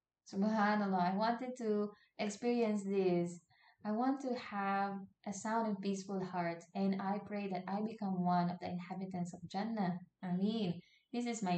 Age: 20-39